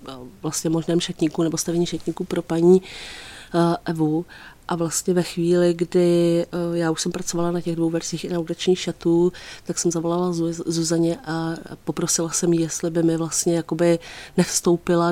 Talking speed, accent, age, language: 160 wpm, native, 30-49, Czech